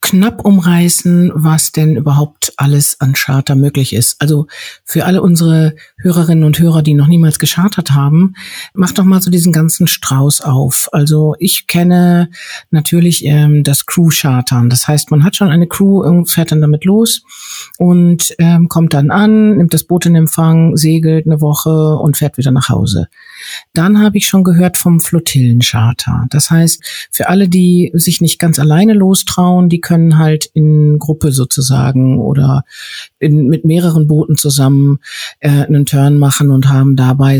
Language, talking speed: German, 165 wpm